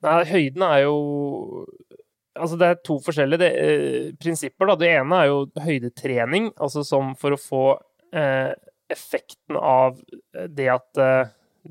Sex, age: male, 20-39